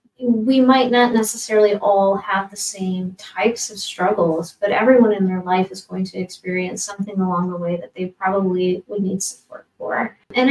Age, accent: 30-49, American